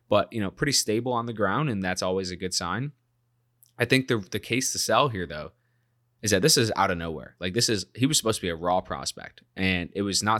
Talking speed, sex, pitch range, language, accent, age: 260 wpm, male, 90-115 Hz, English, American, 20-39